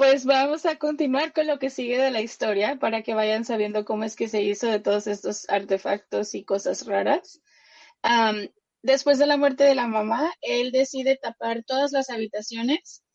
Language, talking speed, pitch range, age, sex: Spanish, 185 wpm, 220-270 Hz, 20-39, female